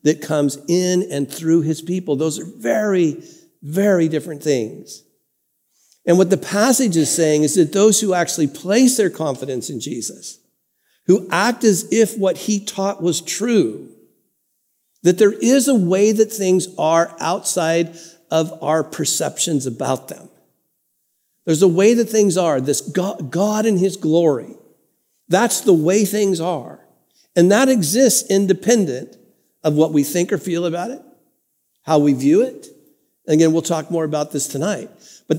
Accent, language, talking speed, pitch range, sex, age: American, English, 160 wpm, 160-215 Hz, male, 50-69